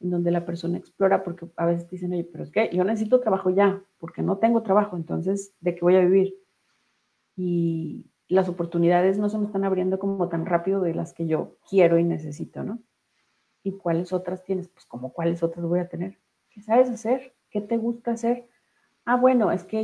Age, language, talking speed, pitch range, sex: 40-59, Spanish, 205 wpm, 175-210 Hz, female